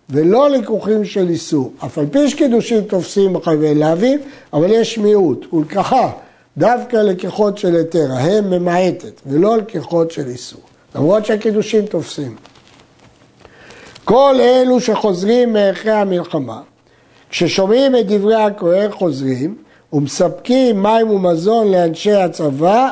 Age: 60-79